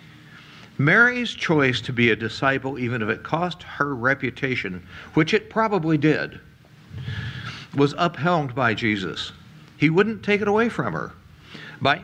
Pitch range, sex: 125-190 Hz, male